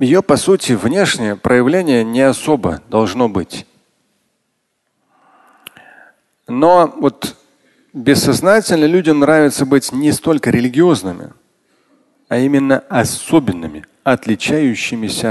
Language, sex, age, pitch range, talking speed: Russian, male, 40-59, 110-145 Hz, 85 wpm